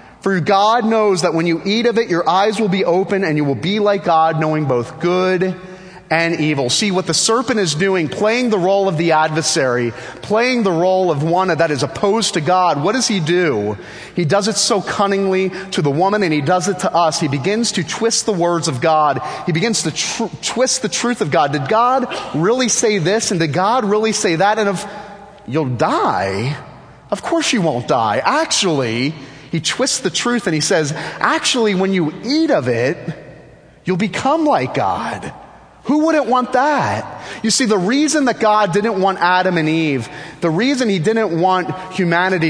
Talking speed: 200 wpm